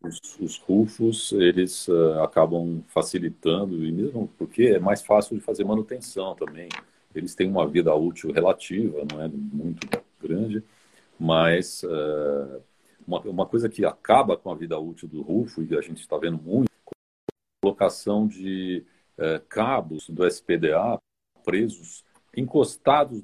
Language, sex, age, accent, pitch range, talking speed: Portuguese, male, 50-69, Brazilian, 90-125 Hz, 140 wpm